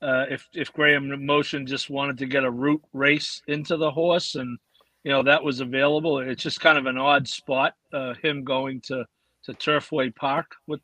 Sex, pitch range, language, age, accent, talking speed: male, 135-155 Hz, English, 50-69, American, 200 wpm